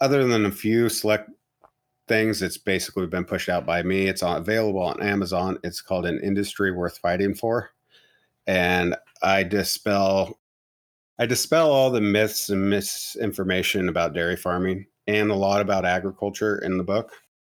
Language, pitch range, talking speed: English, 90-105 Hz, 155 wpm